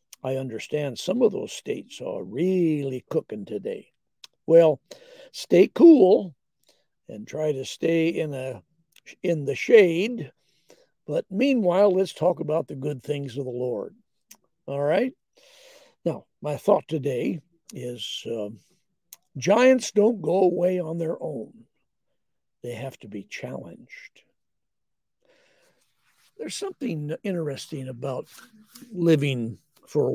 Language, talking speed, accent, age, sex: English, 120 wpm, American, 60-79, male